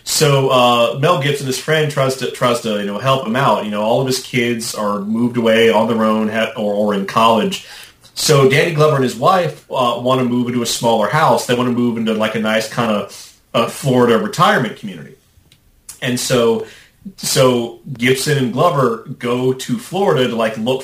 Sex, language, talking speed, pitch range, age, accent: male, English, 200 wpm, 110-145 Hz, 30-49, American